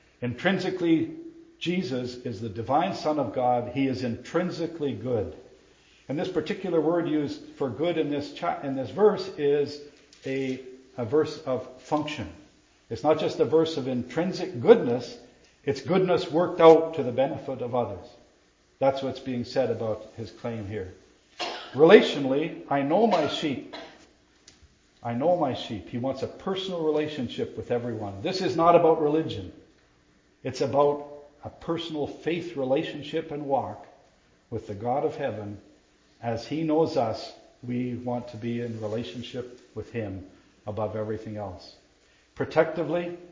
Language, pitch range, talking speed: English, 120-160 Hz, 145 wpm